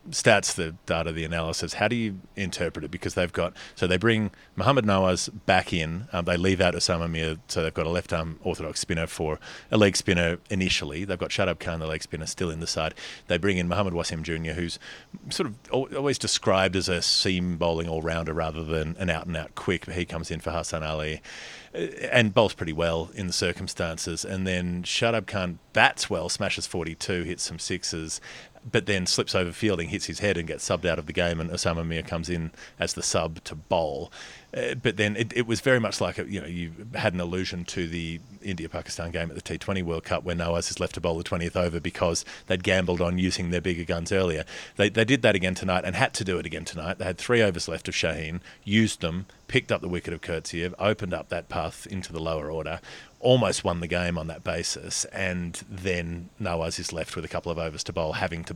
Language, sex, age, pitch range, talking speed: English, male, 30-49, 80-95 Hz, 225 wpm